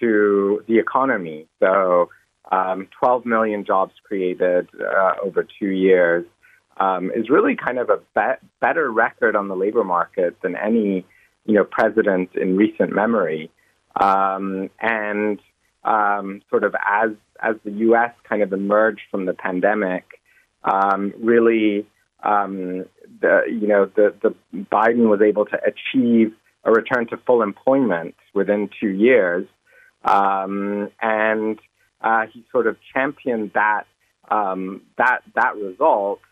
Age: 30-49